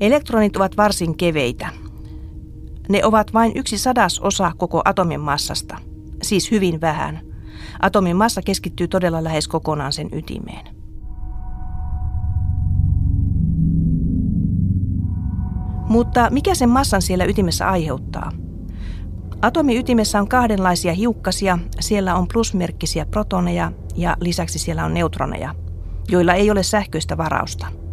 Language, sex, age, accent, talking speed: Finnish, female, 40-59, native, 105 wpm